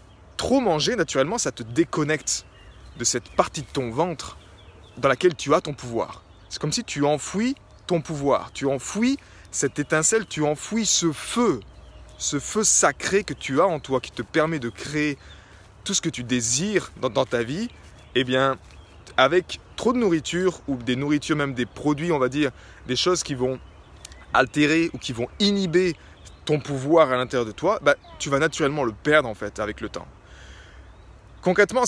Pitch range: 120-160 Hz